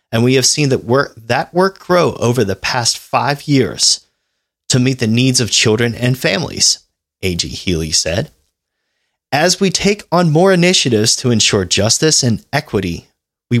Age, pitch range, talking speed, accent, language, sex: 30-49, 110-165 Hz, 160 wpm, American, English, male